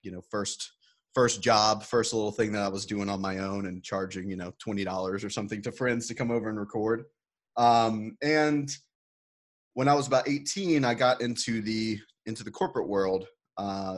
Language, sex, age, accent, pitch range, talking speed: English, male, 30-49, American, 100-120 Hz, 200 wpm